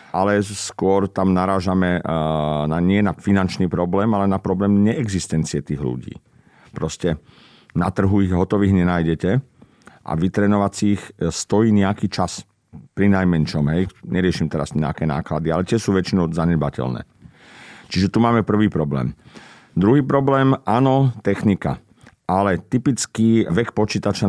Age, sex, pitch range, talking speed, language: 50-69, male, 85-100 Hz, 125 wpm, Slovak